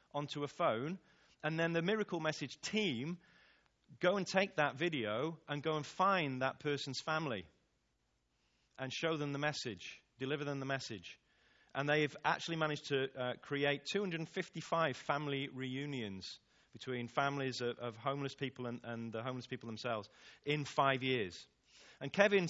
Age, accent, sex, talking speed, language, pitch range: 30-49, British, male, 150 wpm, English, 120-155 Hz